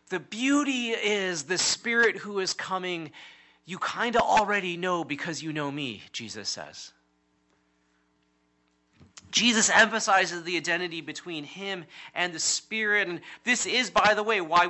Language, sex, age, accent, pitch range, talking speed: English, male, 30-49, American, 145-200 Hz, 145 wpm